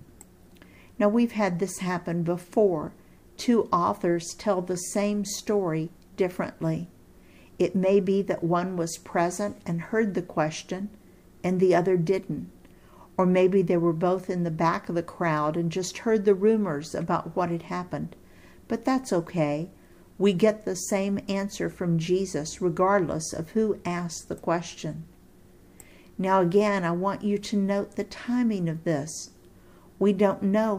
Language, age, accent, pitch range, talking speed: English, 50-69, American, 170-205 Hz, 150 wpm